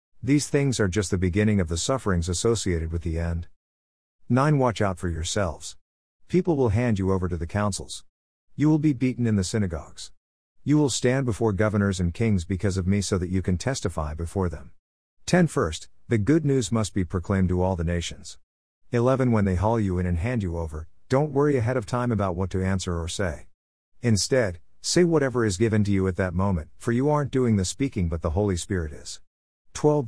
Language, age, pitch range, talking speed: English, 50-69, 85-115 Hz, 210 wpm